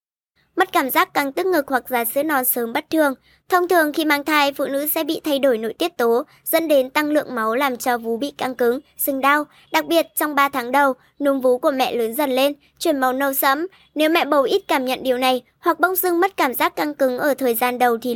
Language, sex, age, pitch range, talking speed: Vietnamese, male, 20-39, 250-315 Hz, 260 wpm